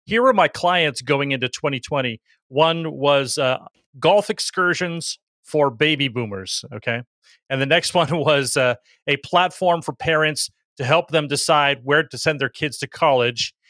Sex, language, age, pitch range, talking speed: male, English, 40-59, 140-180 Hz, 160 wpm